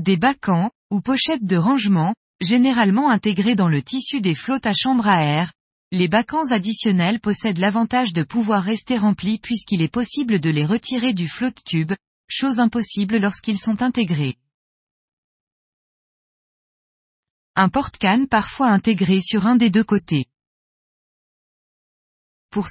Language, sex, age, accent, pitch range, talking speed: French, female, 20-39, French, 190-245 Hz, 130 wpm